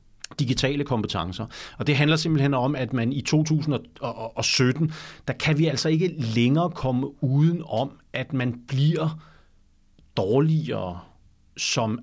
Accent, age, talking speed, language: native, 40-59, 125 wpm, Danish